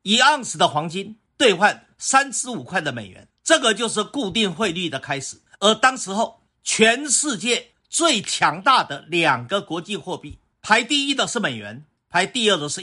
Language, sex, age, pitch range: Chinese, male, 50-69, 170-240 Hz